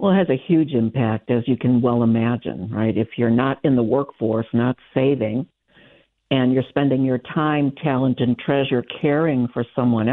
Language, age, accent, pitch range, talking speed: English, 60-79, American, 120-165 Hz, 185 wpm